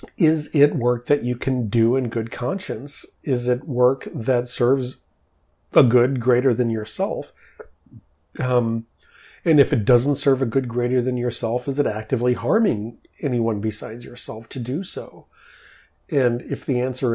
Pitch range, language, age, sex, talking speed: 115-135 Hz, English, 40-59, male, 160 wpm